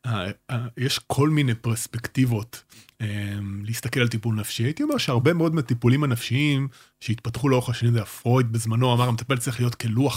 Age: 30-49